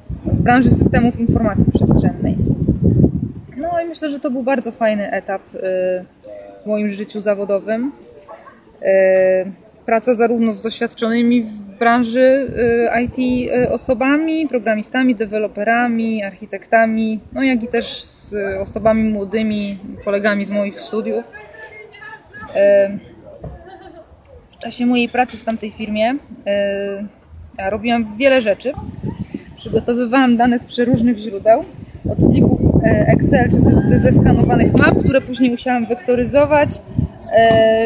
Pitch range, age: 210-255 Hz, 20-39